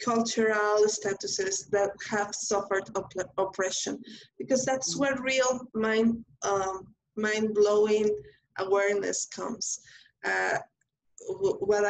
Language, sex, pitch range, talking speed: English, female, 195-235 Hz, 95 wpm